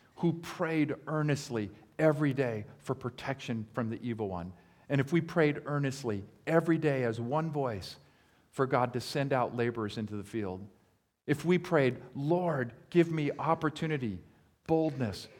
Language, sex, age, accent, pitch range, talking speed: English, male, 50-69, American, 100-135 Hz, 150 wpm